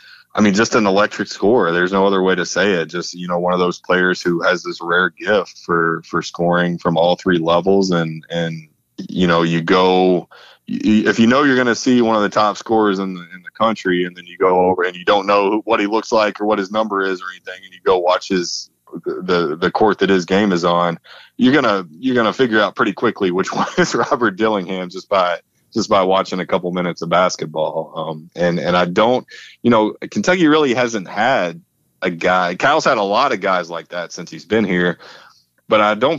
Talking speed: 235 wpm